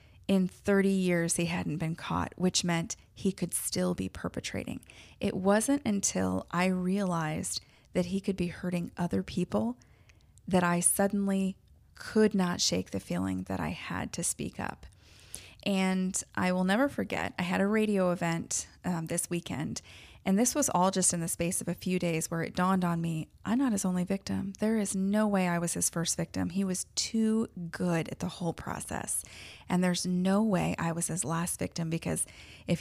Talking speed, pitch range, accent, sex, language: 190 wpm, 160-195 Hz, American, female, English